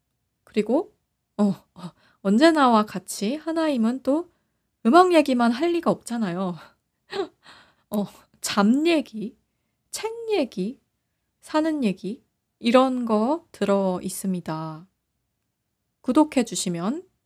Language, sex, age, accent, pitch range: Korean, female, 20-39, native, 190-270 Hz